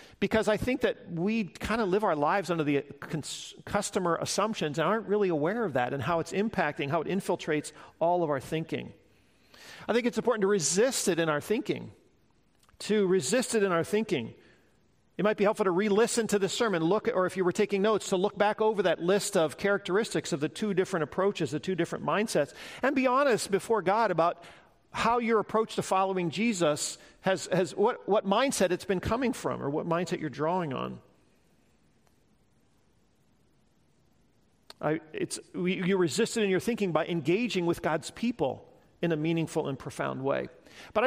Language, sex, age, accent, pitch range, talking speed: English, male, 50-69, American, 165-215 Hz, 190 wpm